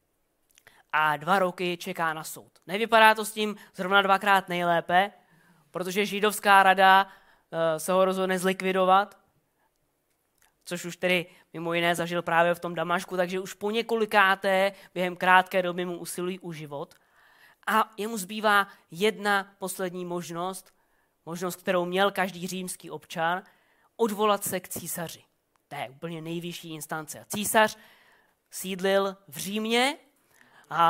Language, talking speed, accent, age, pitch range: Czech, 130 wpm, native, 20-39, 175-205 Hz